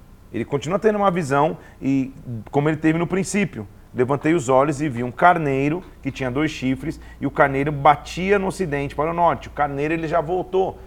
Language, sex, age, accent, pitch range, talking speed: Portuguese, male, 40-59, Brazilian, 120-155 Hz, 200 wpm